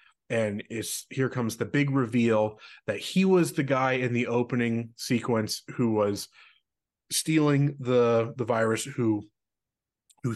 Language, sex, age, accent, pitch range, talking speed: English, male, 30-49, American, 105-130 Hz, 140 wpm